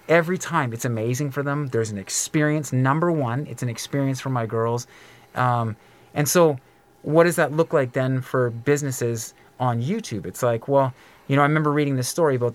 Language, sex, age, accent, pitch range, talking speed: English, male, 30-49, American, 125-150 Hz, 195 wpm